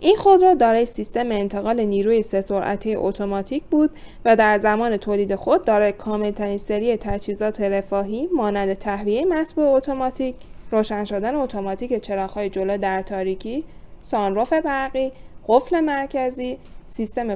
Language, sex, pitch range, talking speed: Persian, female, 205-275 Hz, 125 wpm